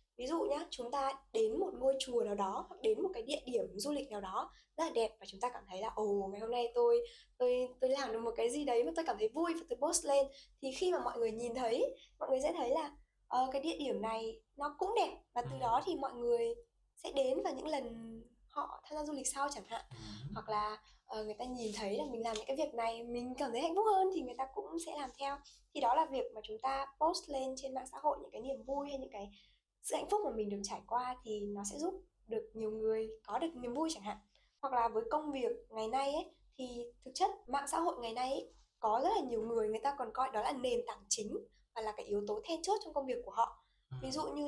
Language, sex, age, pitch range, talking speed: Vietnamese, female, 10-29, 230-330 Hz, 275 wpm